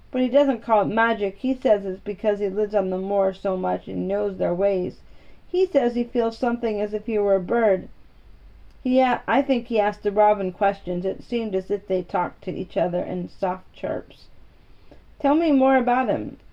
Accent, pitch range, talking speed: American, 195-240 Hz, 205 wpm